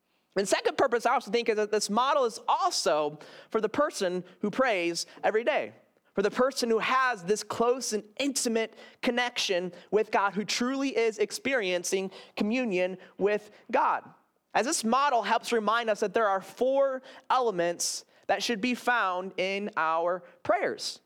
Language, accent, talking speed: English, American, 160 wpm